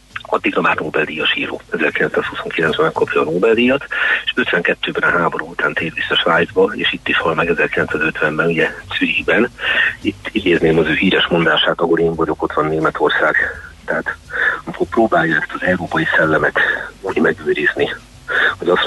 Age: 40-59